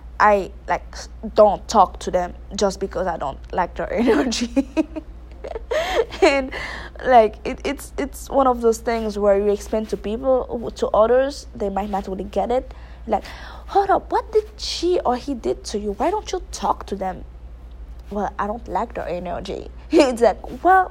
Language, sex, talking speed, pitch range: English, female, 175 wpm, 185-235 Hz